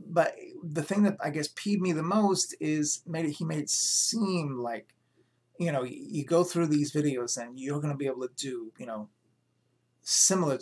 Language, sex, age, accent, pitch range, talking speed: English, male, 30-49, American, 135-170 Hz, 190 wpm